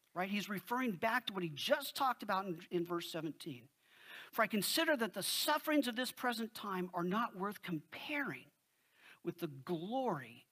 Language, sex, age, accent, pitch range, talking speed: English, male, 50-69, American, 190-270 Hz, 175 wpm